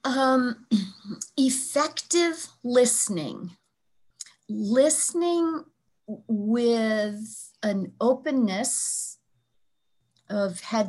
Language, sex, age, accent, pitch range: English, female, 40-59, American, 185-235 Hz